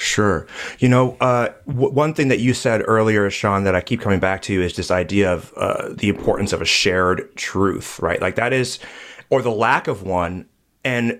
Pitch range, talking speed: 115-145 Hz, 205 wpm